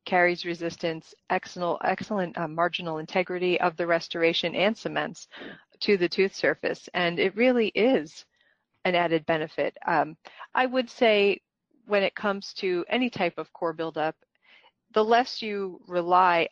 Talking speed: 145 wpm